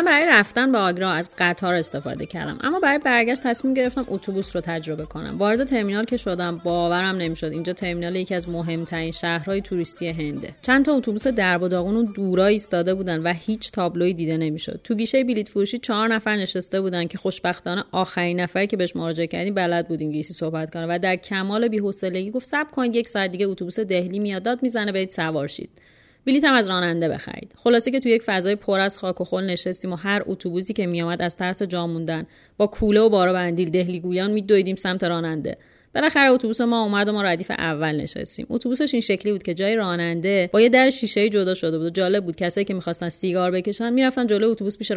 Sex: female